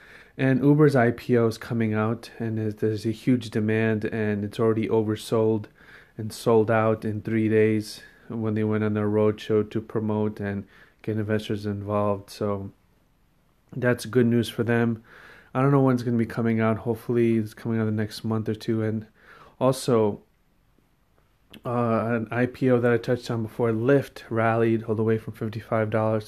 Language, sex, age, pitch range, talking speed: English, male, 30-49, 110-120 Hz, 175 wpm